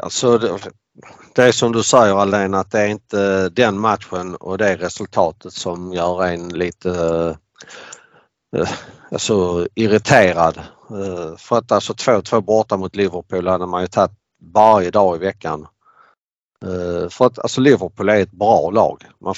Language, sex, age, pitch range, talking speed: Swedish, male, 50-69, 90-115 Hz, 160 wpm